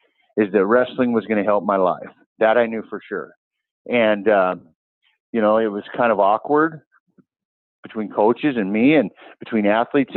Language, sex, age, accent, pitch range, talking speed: English, male, 50-69, American, 100-120 Hz, 175 wpm